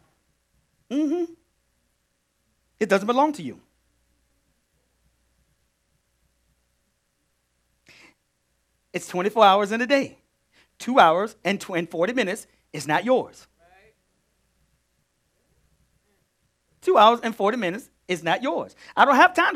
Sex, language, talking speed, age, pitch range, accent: male, English, 100 wpm, 40-59, 175-280 Hz, American